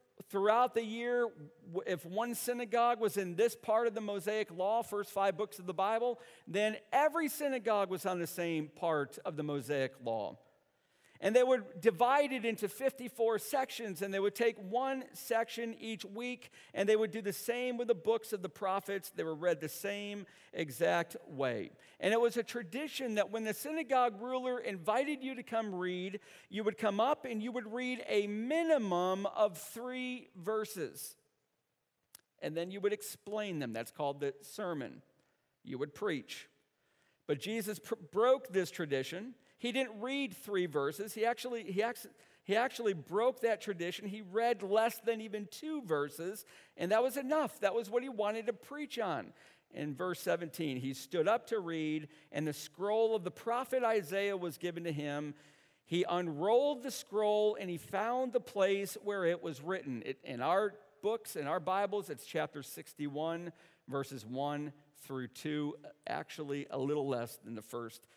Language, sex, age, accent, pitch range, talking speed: English, male, 50-69, American, 175-235 Hz, 175 wpm